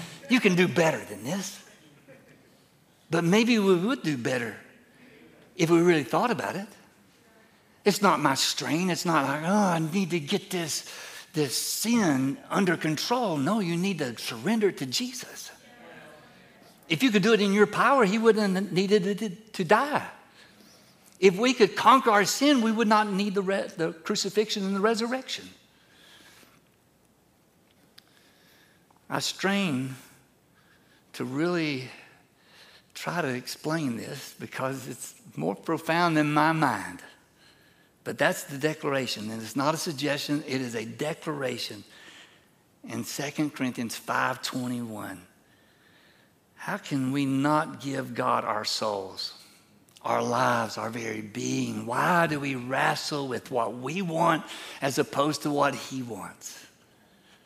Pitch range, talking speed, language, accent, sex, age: 135-195 Hz, 140 wpm, English, American, male, 60-79